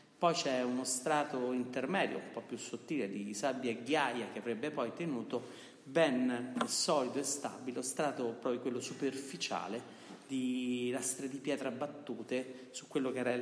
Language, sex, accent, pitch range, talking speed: Italian, male, native, 115-135 Hz, 160 wpm